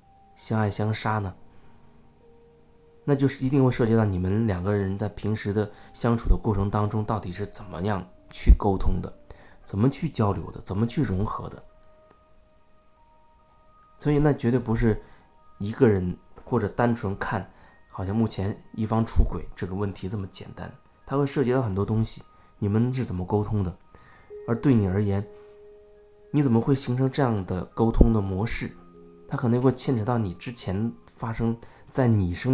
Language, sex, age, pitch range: Chinese, male, 20-39, 100-125 Hz